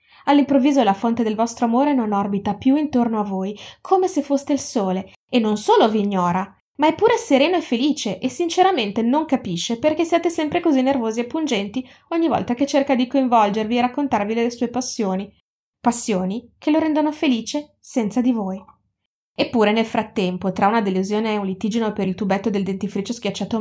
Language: Italian